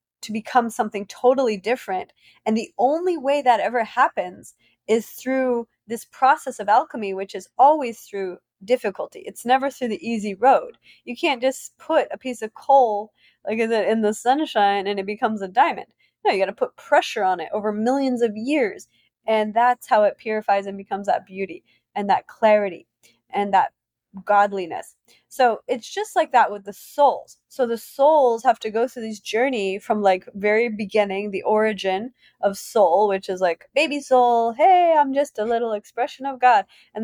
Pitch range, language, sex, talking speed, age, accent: 200-255 Hz, English, female, 180 wpm, 20-39, American